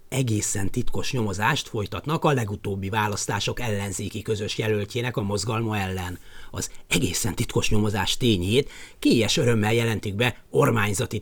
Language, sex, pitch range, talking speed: Hungarian, male, 105-155 Hz, 125 wpm